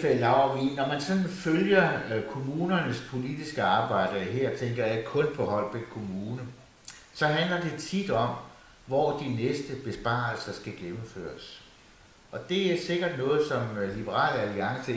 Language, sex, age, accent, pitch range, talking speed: Danish, male, 60-79, native, 105-150 Hz, 135 wpm